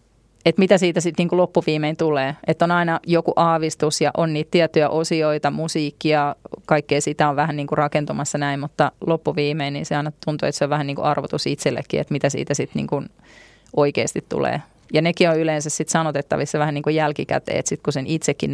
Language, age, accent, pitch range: Finnish, 30-49, native, 140-160 Hz